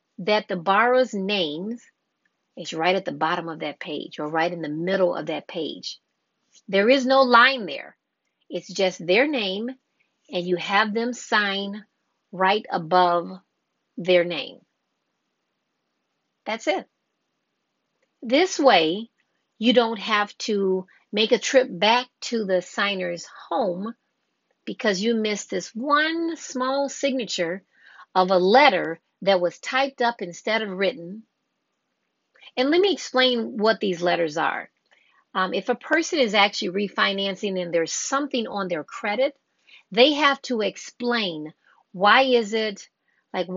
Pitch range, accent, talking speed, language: 185-255 Hz, American, 140 wpm, English